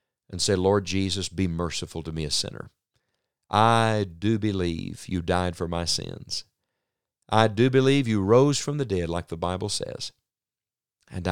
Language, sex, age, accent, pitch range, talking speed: English, male, 50-69, American, 90-130 Hz, 165 wpm